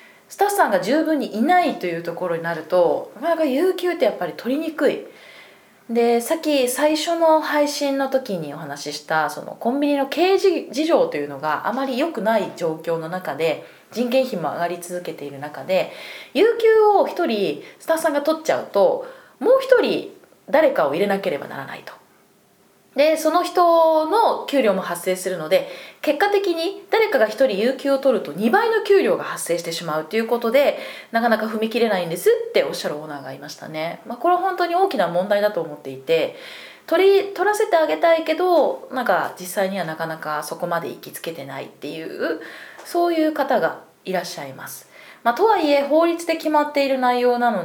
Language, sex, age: Japanese, female, 20-39